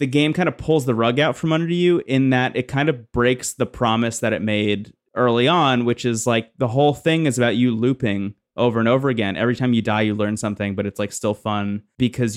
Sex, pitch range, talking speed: male, 110-140 Hz, 250 wpm